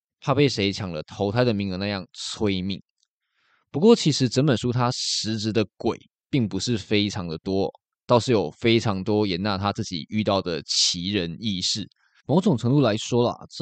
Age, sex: 20-39, male